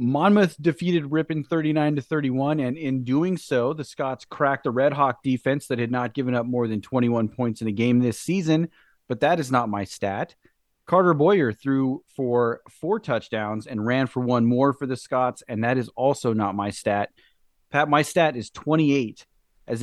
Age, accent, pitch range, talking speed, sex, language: 30-49, American, 110-140 Hz, 205 wpm, male, English